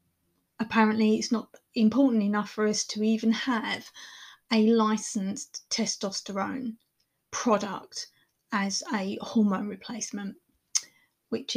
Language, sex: English, female